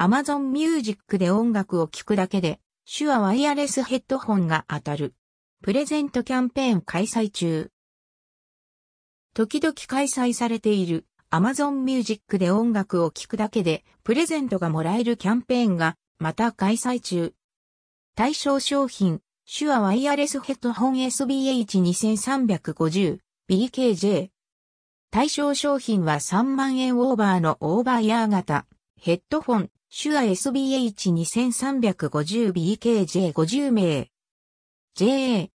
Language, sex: Japanese, female